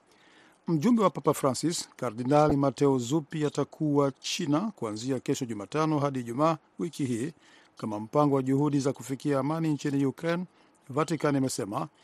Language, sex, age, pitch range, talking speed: Swahili, male, 50-69, 130-155 Hz, 135 wpm